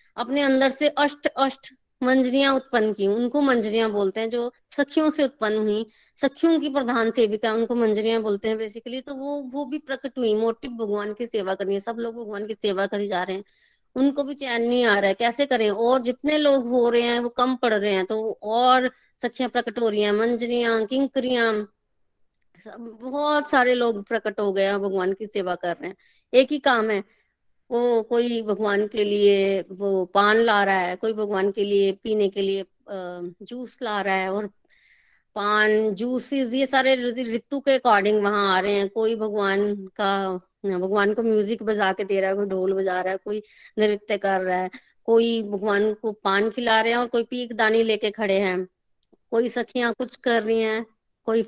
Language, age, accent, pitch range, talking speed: Hindi, 20-39, native, 200-245 Hz, 195 wpm